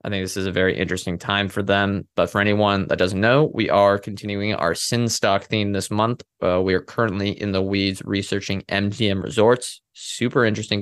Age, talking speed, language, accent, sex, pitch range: 20-39, 205 wpm, English, American, male, 95-110 Hz